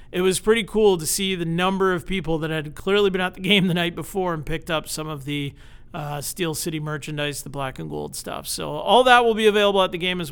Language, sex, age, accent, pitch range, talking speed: English, male, 40-59, American, 145-180 Hz, 260 wpm